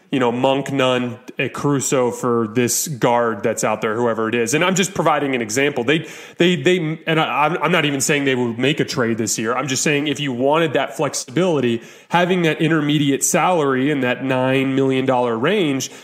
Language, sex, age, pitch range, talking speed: English, male, 30-49, 130-165 Hz, 200 wpm